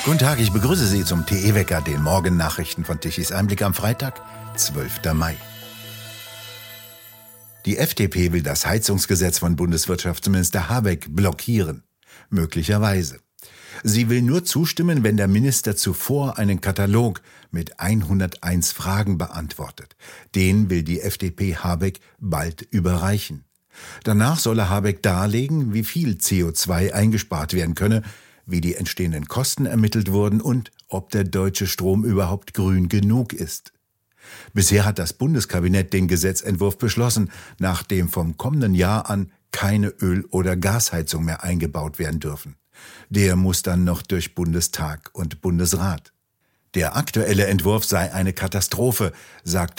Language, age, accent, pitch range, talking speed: German, 60-79, German, 90-110 Hz, 130 wpm